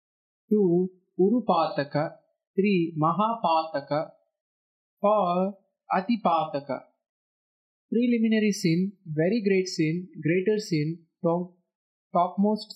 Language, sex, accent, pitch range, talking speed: English, male, Indian, 165-215 Hz, 70 wpm